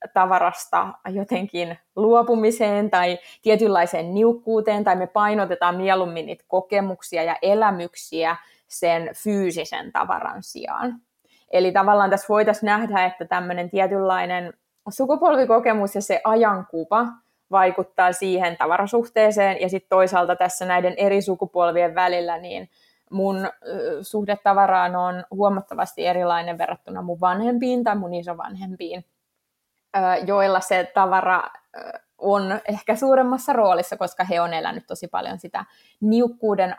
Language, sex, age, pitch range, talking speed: Finnish, female, 20-39, 180-215 Hz, 110 wpm